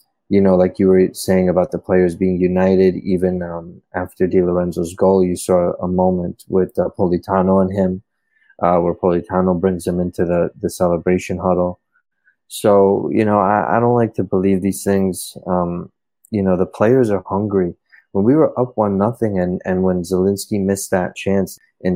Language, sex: English, male